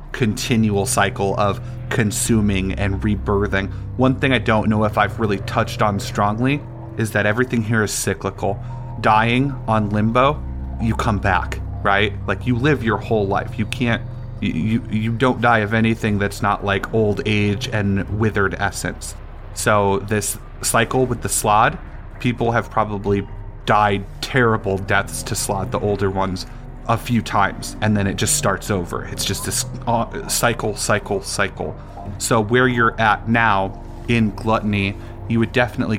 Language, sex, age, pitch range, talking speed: English, male, 30-49, 100-120 Hz, 160 wpm